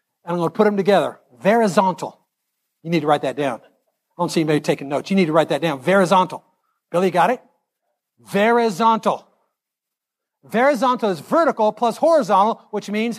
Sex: male